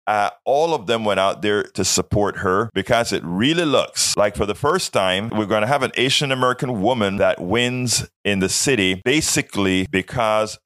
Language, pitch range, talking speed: English, 95-125 Hz, 190 wpm